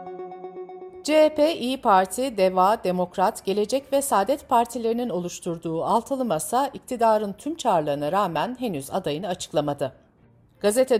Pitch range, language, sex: 185-255 Hz, Turkish, female